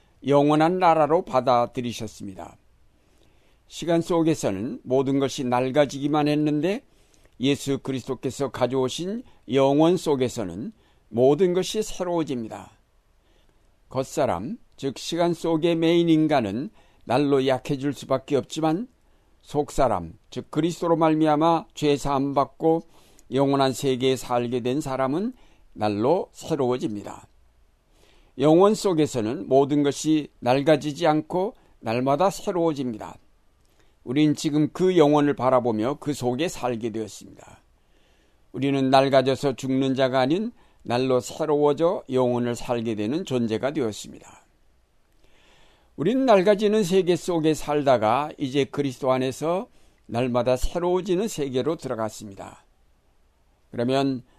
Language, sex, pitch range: Korean, male, 125-160 Hz